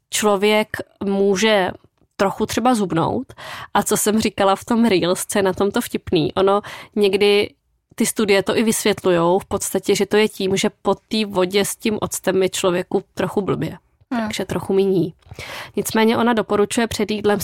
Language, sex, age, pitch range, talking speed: Czech, female, 20-39, 195-220 Hz, 160 wpm